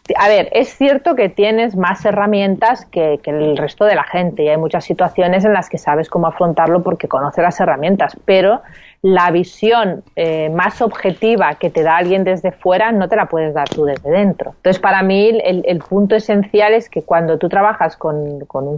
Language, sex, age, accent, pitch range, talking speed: Spanish, female, 30-49, Spanish, 165-210 Hz, 205 wpm